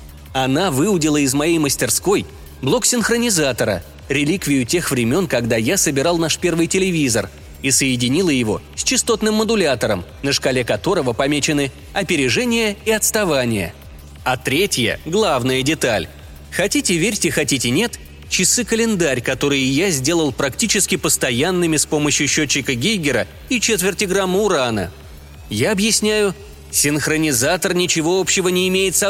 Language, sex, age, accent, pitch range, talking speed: Russian, male, 20-39, native, 120-205 Hz, 120 wpm